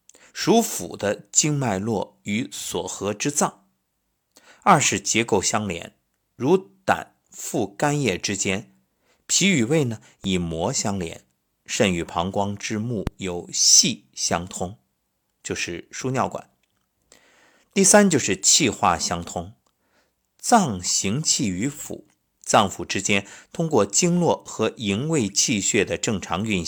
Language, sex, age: Chinese, male, 50-69